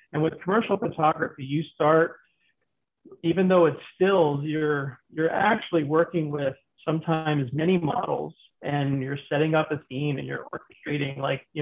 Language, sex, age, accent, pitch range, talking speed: English, male, 40-59, American, 145-175 Hz, 150 wpm